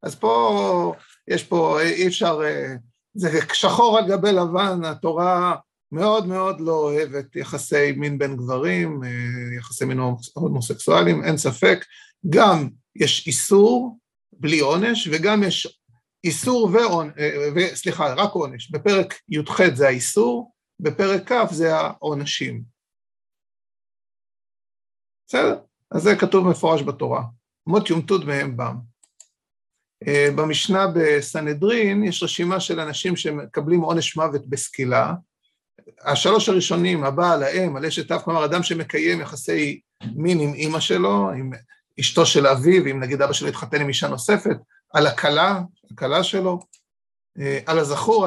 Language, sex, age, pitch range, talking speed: Hebrew, male, 50-69, 140-190 Hz, 125 wpm